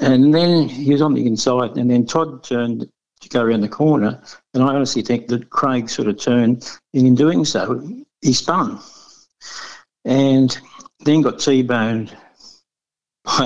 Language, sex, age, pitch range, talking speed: English, male, 60-79, 120-140 Hz, 160 wpm